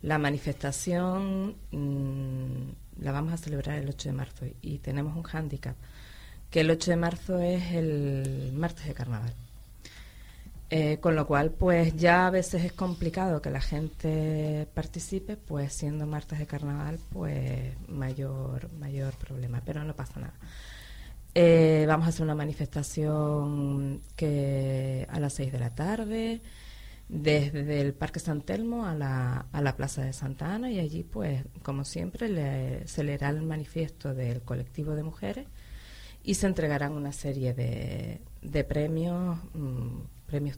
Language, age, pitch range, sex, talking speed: Spanish, 30-49, 130-165 Hz, female, 155 wpm